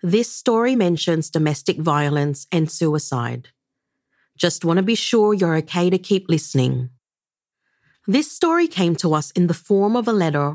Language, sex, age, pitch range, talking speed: English, female, 40-59, 160-220 Hz, 160 wpm